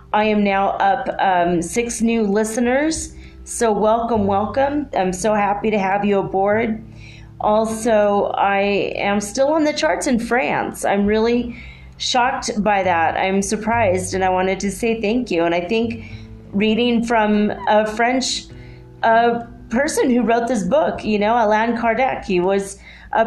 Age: 30-49